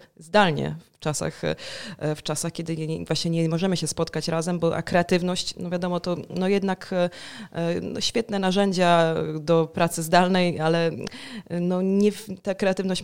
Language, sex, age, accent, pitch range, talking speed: Polish, female, 20-39, native, 160-185 Hz, 150 wpm